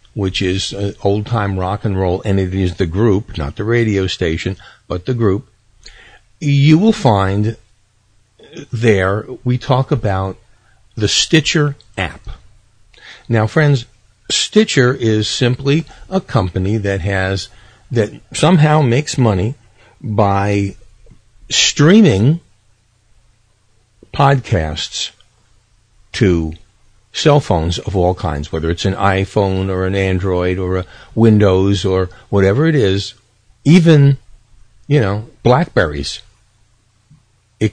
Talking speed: 110 wpm